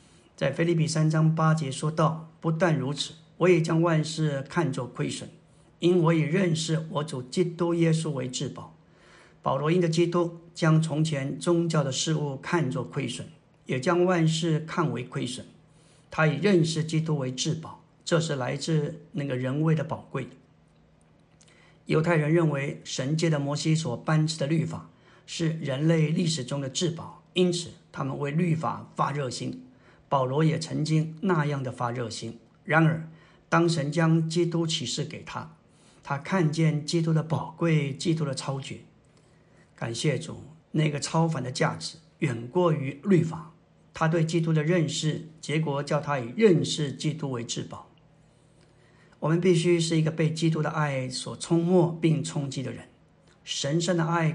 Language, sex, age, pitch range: Chinese, male, 50-69, 145-170 Hz